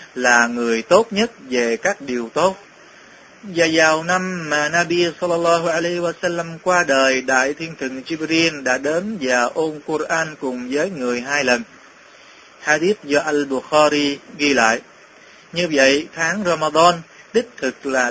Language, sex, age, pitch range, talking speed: Vietnamese, male, 20-39, 130-170 Hz, 150 wpm